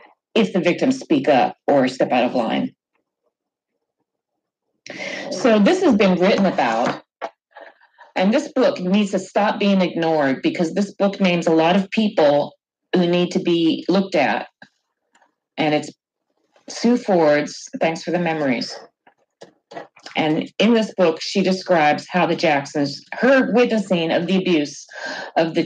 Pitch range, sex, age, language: 150-195 Hz, female, 40-59, English